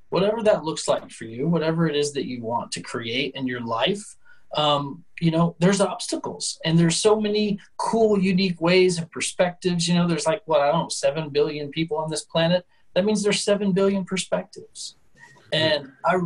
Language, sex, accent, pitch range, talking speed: English, male, American, 140-190 Hz, 190 wpm